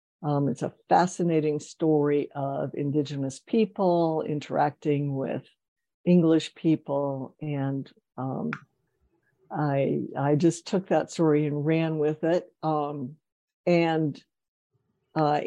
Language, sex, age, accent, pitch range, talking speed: English, female, 60-79, American, 145-170 Hz, 105 wpm